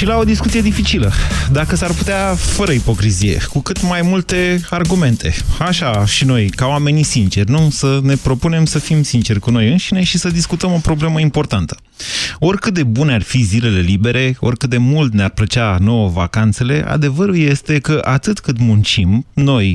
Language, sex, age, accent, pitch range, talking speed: Romanian, male, 30-49, native, 110-155 Hz, 175 wpm